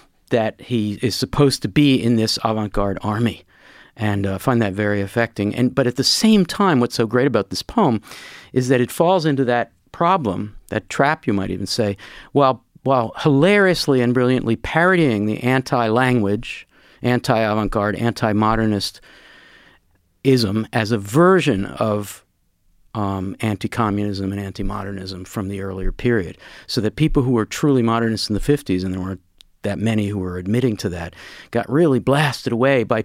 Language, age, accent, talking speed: English, 50-69, American, 160 wpm